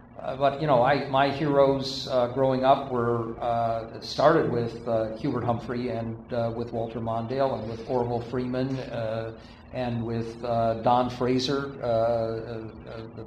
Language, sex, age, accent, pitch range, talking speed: English, male, 50-69, American, 115-135 Hz, 160 wpm